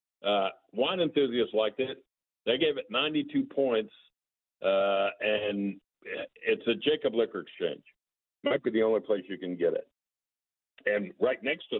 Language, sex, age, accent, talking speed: English, male, 50-69, American, 155 wpm